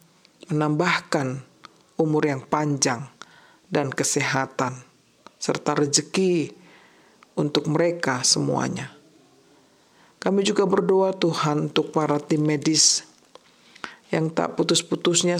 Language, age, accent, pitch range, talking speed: Indonesian, 50-69, native, 150-180 Hz, 85 wpm